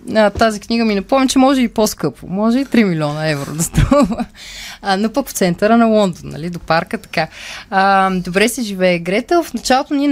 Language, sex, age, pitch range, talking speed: Bulgarian, female, 20-39, 180-255 Hz, 195 wpm